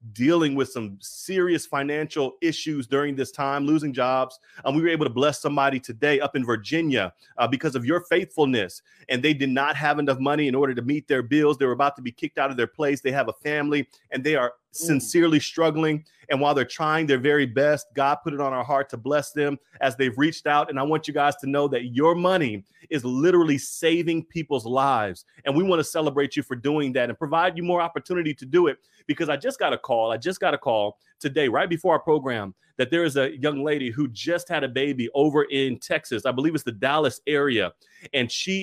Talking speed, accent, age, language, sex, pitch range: 230 wpm, American, 30-49, English, male, 130-155 Hz